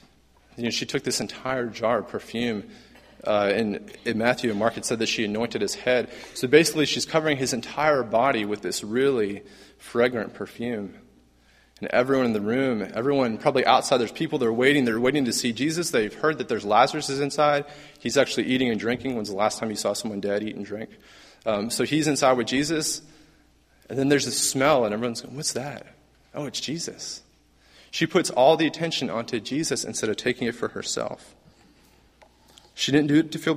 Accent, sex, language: American, male, English